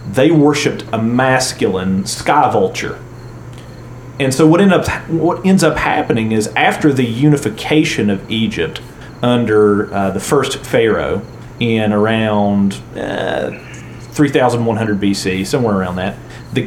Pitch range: 105-135 Hz